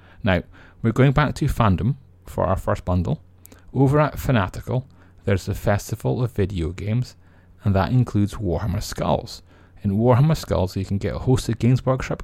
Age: 30-49